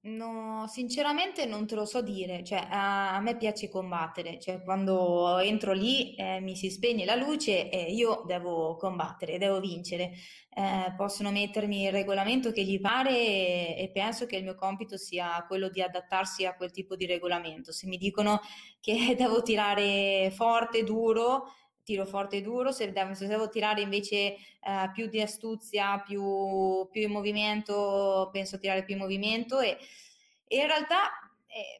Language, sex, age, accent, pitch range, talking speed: Italian, female, 20-39, native, 190-220 Hz, 165 wpm